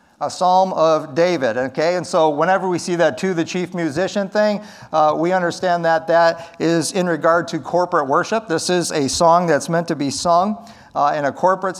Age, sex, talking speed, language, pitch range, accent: 50-69, male, 205 wpm, English, 160-190 Hz, American